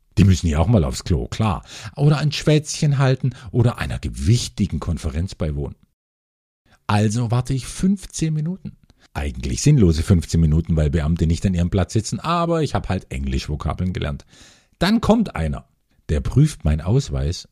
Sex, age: male, 50-69